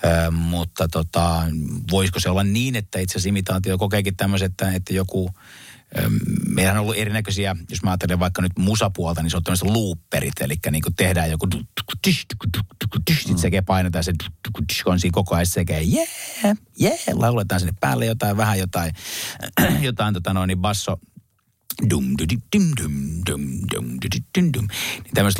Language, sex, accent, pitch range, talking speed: Finnish, male, native, 85-105 Hz, 120 wpm